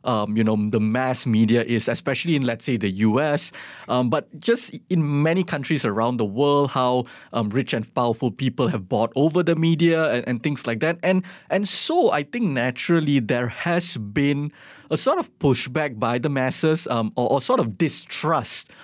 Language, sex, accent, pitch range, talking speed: English, male, Malaysian, 120-160 Hz, 190 wpm